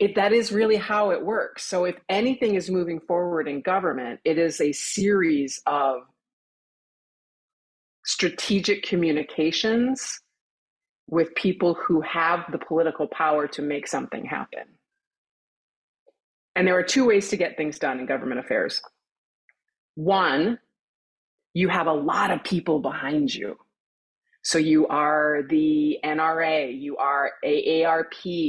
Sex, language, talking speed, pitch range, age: female, English, 130 wpm, 155-205 Hz, 30-49